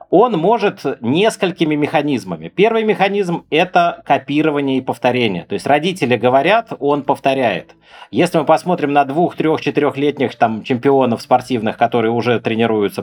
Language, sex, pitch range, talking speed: Russian, male, 115-150 Hz, 135 wpm